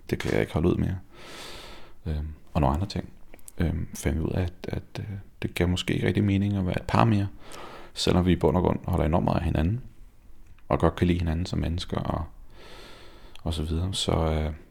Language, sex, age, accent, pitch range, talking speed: Danish, male, 30-49, native, 85-100 Hz, 225 wpm